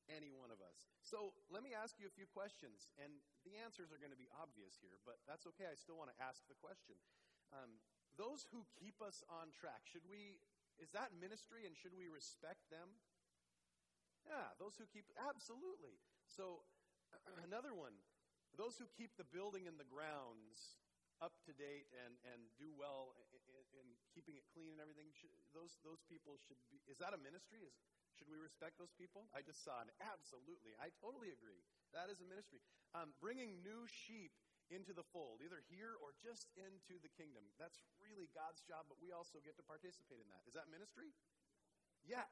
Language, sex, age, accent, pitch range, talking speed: English, male, 40-59, American, 140-200 Hz, 195 wpm